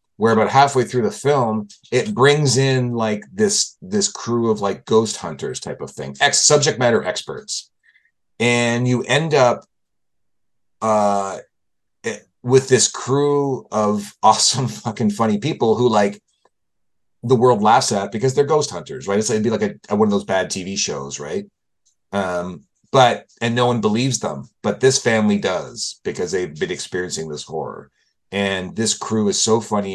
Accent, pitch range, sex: American, 90-130 Hz, male